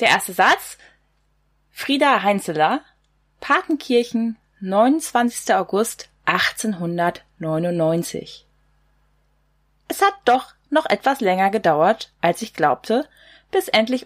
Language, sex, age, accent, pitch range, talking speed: German, female, 20-39, German, 175-240 Hz, 90 wpm